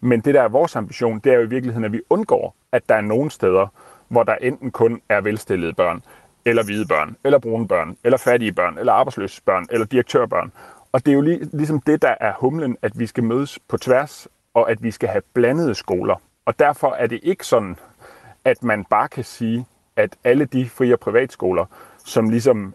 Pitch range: 110-130 Hz